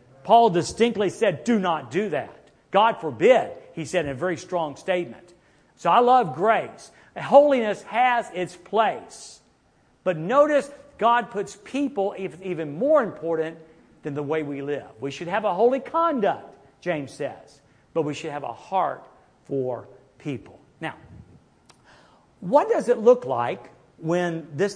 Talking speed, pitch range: 150 wpm, 150-210 Hz